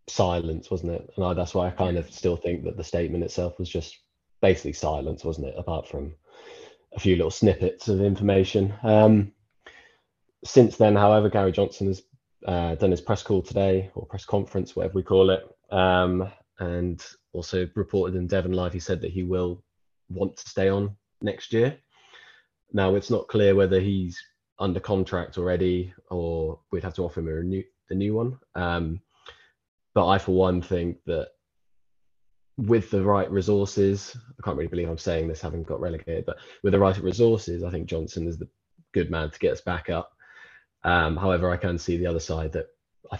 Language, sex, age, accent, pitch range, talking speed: English, male, 20-39, British, 85-100 Hz, 190 wpm